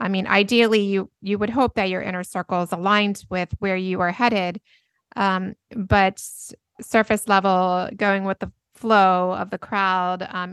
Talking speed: 170 wpm